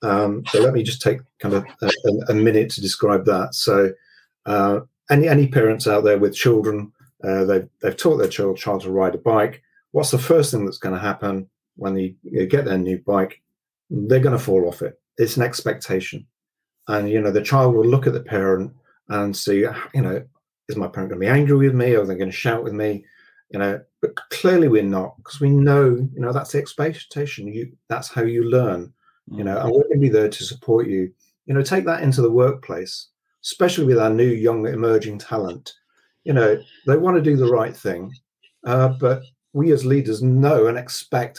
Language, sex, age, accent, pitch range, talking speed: English, male, 40-59, British, 105-135 Hz, 215 wpm